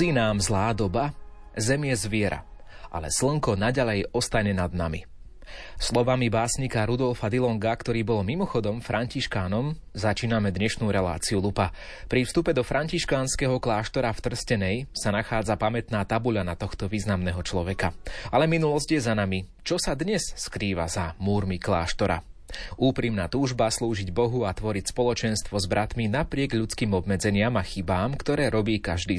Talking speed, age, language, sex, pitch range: 135 wpm, 30-49, Slovak, male, 100-125 Hz